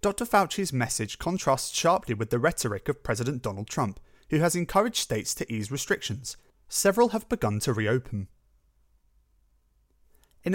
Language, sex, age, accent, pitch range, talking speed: English, male, 30-49, British, 110-160 Hz, 140 wpm